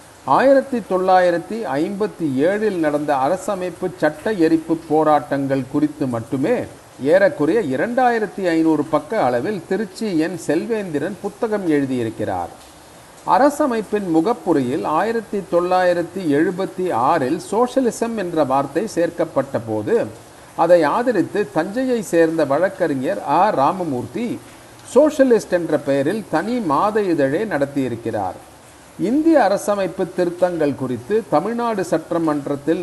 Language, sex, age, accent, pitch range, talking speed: Tamil, male, 40-59, native, 145-205 Hz, 90 wpm